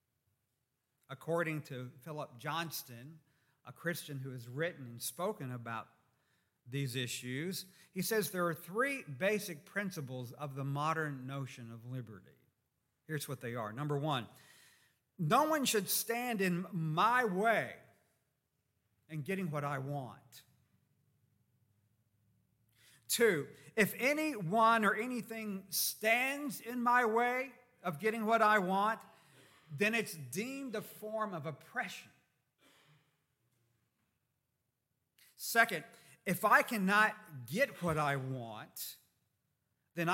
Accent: American